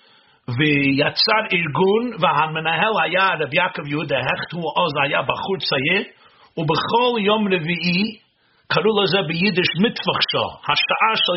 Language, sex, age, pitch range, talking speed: Hebrew, male, 50-69, 165-220 Hz, 110 wpm